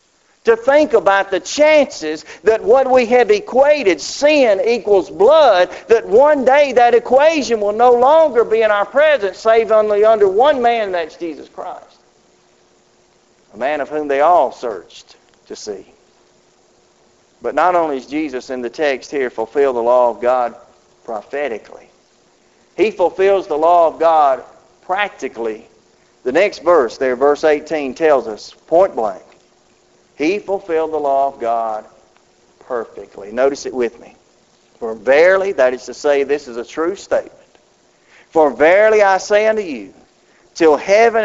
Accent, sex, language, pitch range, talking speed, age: American, male, English, 150-235 Hz, 155 wpm, 50-69